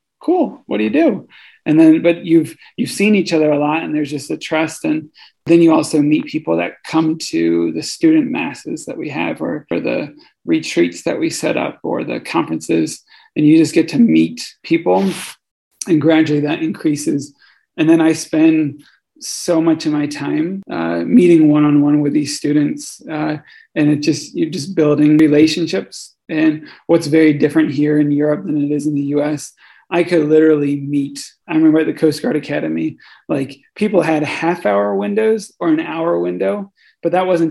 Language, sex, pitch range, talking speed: English, male, 145-170 Hz, 185 wpm